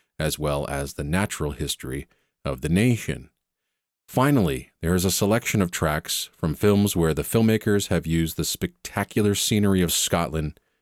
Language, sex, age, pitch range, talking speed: English, male, 40-59, 75-100 Hz, 155 wpm